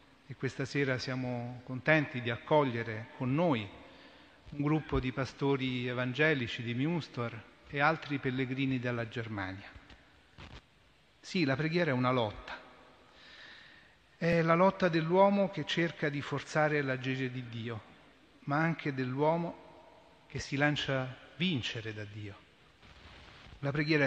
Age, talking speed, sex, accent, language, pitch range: 40-59, 125 wpm, male, native, Italian, 120-150 Hz